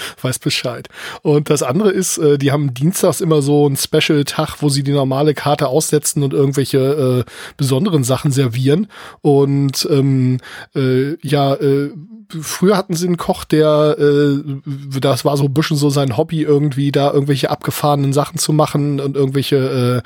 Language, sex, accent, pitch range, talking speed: English, male, German, 140-155 Hz, 165 wpm